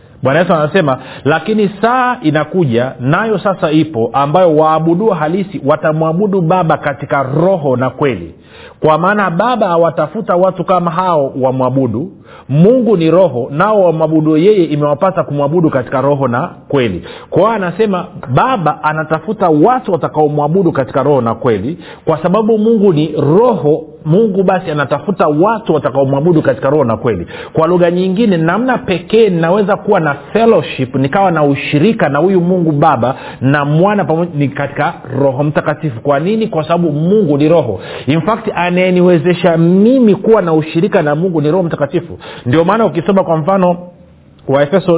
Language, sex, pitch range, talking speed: Swahili, male, 140-185 Hz, 145 wpm